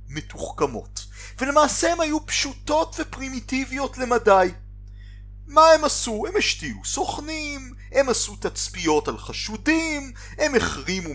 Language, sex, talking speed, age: Hebrew, male, 110 wpm, 40-59